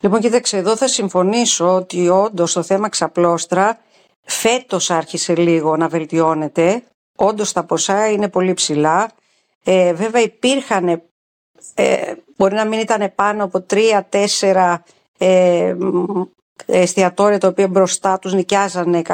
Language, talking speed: Greek, 120 wpm